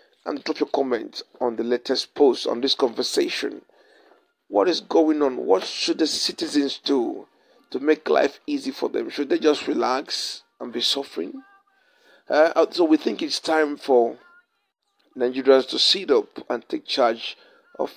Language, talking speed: English, 160 wpm